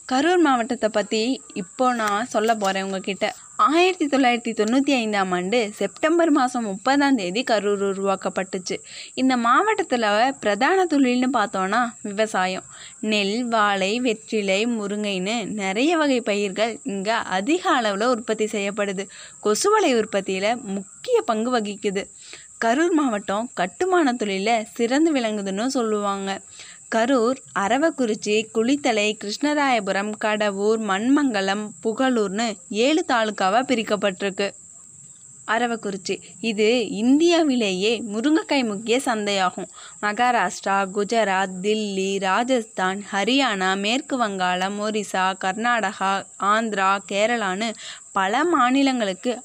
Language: Tamil